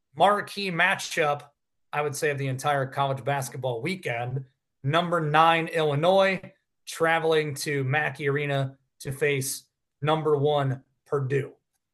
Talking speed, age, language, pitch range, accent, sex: 115 wpm, 30-49, English, 145-195 Hz, American, male